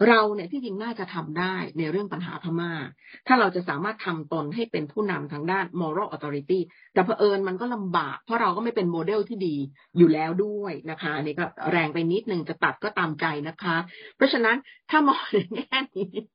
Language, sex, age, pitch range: Thai, female, 30-49, 160-210 Hz